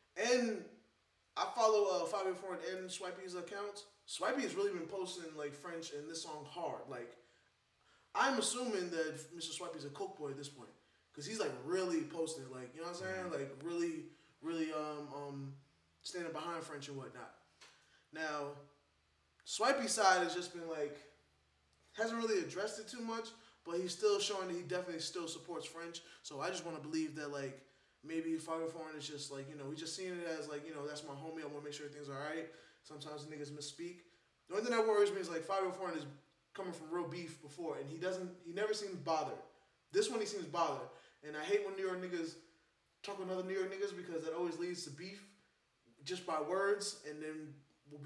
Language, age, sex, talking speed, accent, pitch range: English, 20-39, male, 205 wpm, American, 150-185 Hz